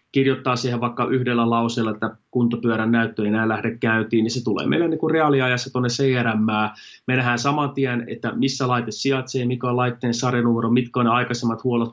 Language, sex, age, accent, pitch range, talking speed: Finnish, male, 30-49, native, 115-135 Hz, 185 wpm